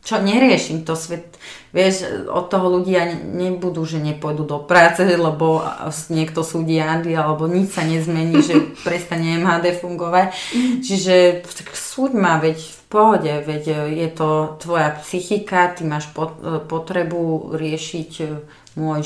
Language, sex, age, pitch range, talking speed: Slovak, female, 30-49, 150-180 Hz, 125 wpm